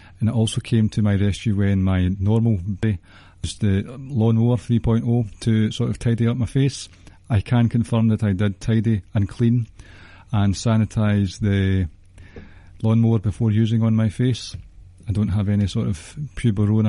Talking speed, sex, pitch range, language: 165 wpm, male, 100-120 Hz, English